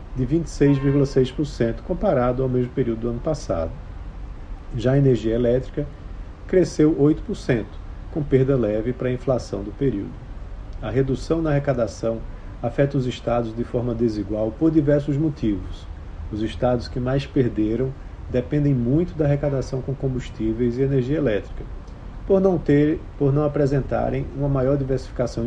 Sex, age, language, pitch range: male, 40-59, Portuguese, 110-140 Hz